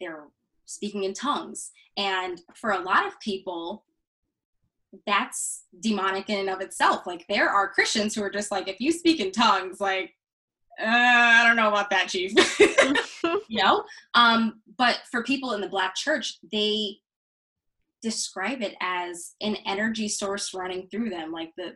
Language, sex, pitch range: English, female, 185-245 Hz